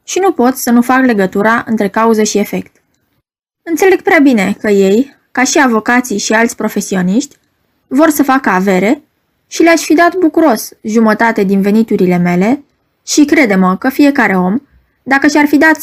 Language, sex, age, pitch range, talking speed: Romanian, female, 20-39, 205-280 Hz, 165 wpm